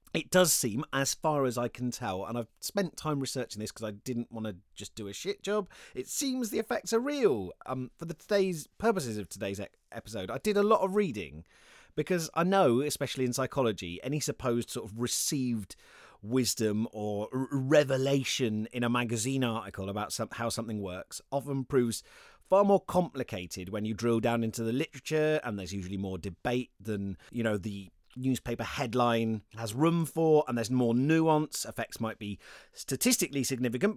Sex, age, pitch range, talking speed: male, 30-49, 105-140 Hz, 185 wpm